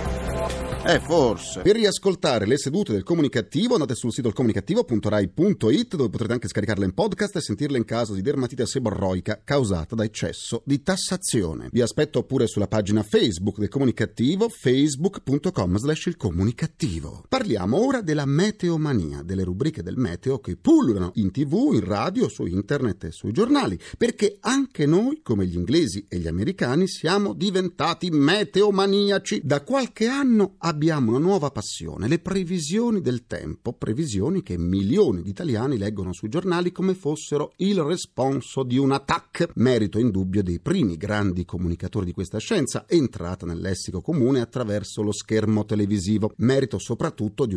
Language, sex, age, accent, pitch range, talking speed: Italian, male, 40-59, native, 100-155 Hz, 155 wpm